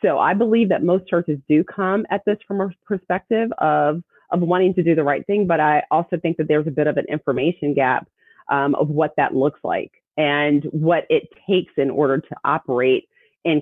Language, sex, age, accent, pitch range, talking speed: English, female, 30-49, American, 150-190 Hz, 210 wpm